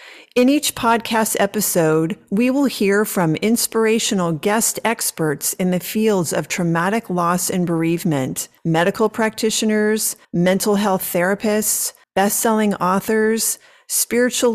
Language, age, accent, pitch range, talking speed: English, 40-59, American, 155-215 Hz, 110 wpm